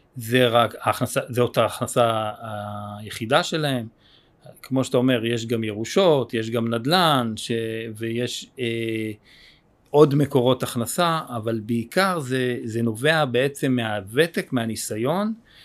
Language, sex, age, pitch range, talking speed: Hebrew, male, 30-49, 115-155 Hz, 115 wpm